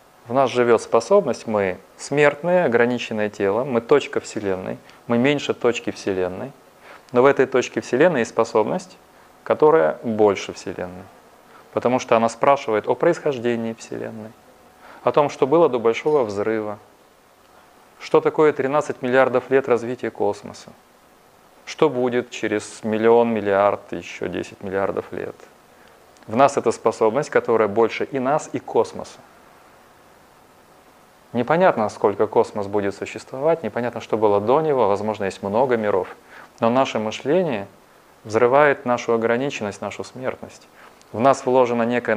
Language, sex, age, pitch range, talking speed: Russian, male, 30-49, 110-130 Hz, 130 wpm